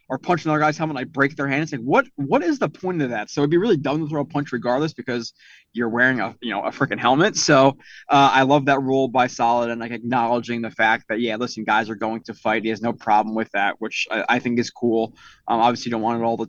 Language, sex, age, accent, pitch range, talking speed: English, male, 20-39, American, 120-140 Hz, 295 wpm